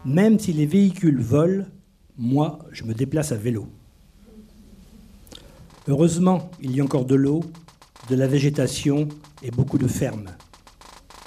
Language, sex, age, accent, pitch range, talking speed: French, male, 50-69, French, 125-165 Hz, 135 wpm